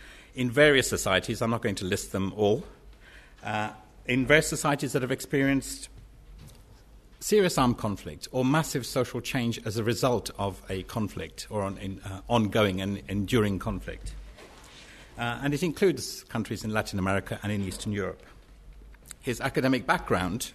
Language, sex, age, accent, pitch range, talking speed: English, male, 60-79, British, 105-135 Hz, 150 wpm